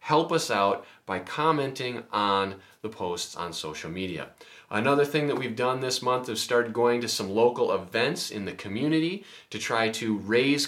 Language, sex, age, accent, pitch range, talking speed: English, male, 30-49, American, 100-135 Hz, 180 wpm